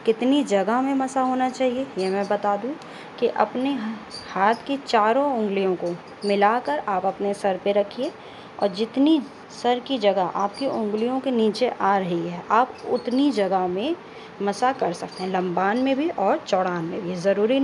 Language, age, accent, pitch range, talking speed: Hindi, 20-39, native, 200-245 Hz, 175 wpm